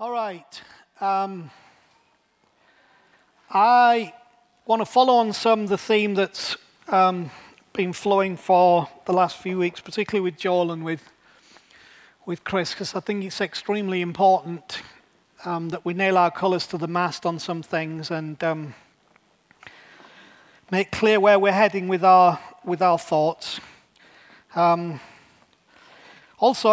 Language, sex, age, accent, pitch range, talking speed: English, male, 40-59, British, 165-195 Hz, 130 wpm